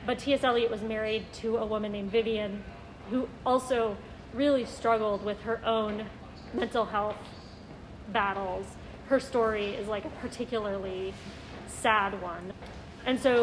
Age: 30-49